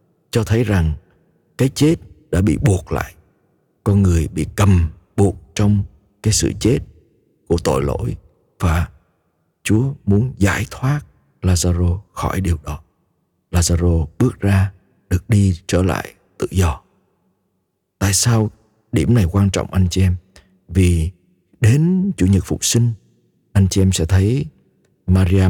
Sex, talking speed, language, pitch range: male, 140 wpm, Vietnamese, 90-115 Hz